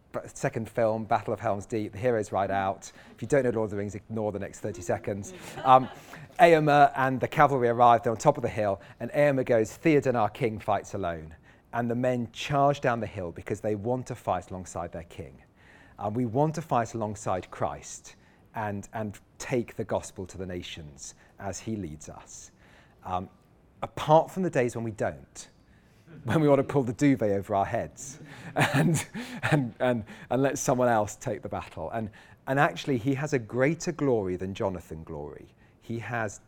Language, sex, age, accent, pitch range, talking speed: English, male, 40-59, British, 95-125 Hz, 195 wpm